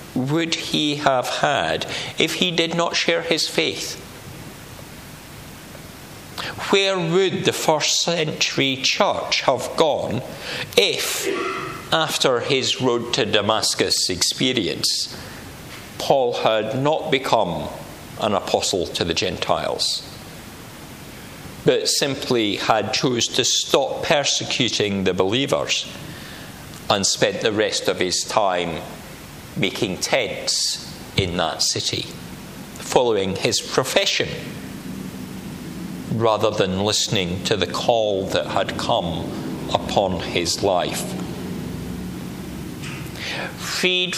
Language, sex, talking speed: English, male, 100 wpm